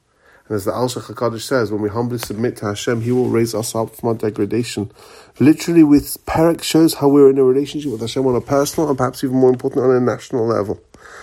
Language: English